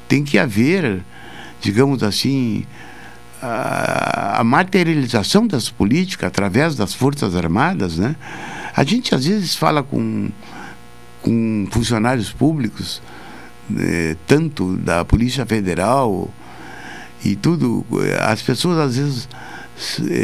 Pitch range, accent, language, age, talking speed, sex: 95-155 Hz, Brazilian, Portuguese, 60-79, 105 wpm, male